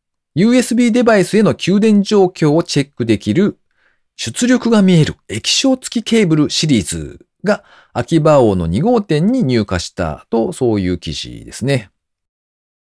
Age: 40-59